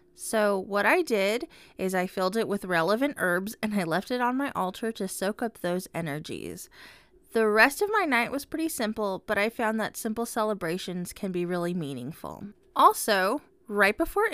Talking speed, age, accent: 185 wpm, 20-39, American